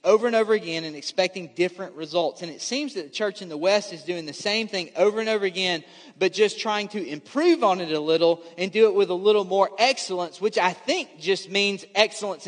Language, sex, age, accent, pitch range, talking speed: English, male, 30-49, American, 185-255 Hz, 235 wpm